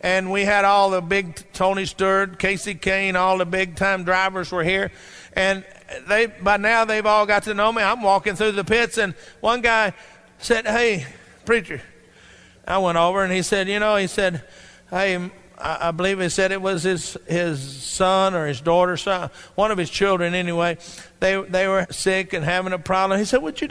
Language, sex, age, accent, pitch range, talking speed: English, male, 50-69, American, 175-210 Hz, 200 wpm